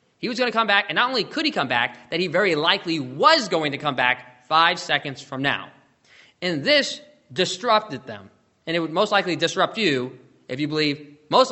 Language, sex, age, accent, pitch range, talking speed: English, male, 20-39, American, 130-190 Hz, 215 wpm